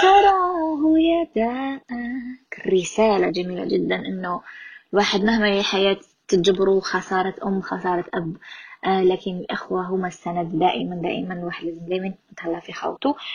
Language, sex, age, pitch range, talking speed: Arabic, female, 20-39, 185-235 Hz, 105 wpm